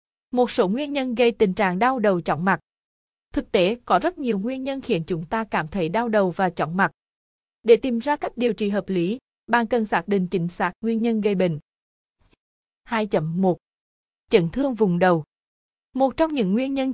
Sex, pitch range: female, 185-235 Hz